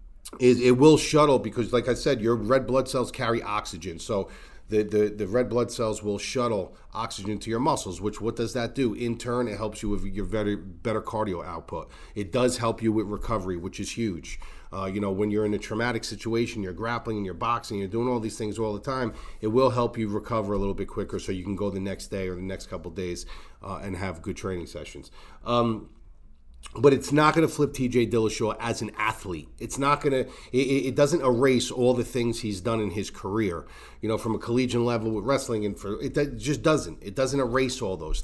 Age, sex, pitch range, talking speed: 40-59, male, 105-130 Hz, 230 wpm